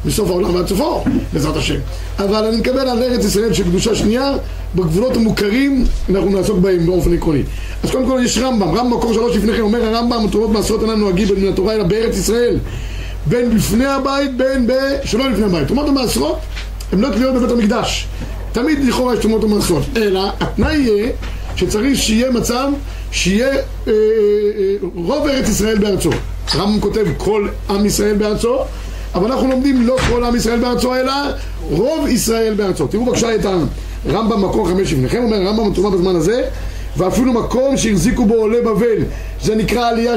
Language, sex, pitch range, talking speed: Hebrew, male, 195-245 Hz, 160 wpm